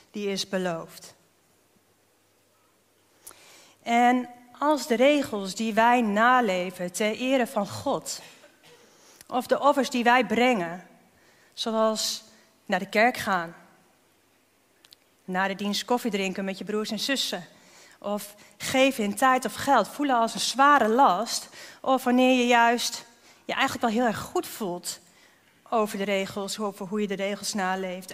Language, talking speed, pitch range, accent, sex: Dutch, 140 wpm, 205-260 Hz, Dutch, female